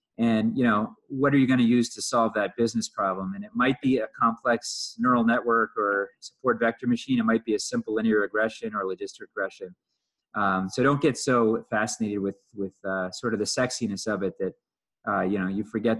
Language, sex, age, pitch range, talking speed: English, male, 30-49, 100-120 Hz, 215 wpm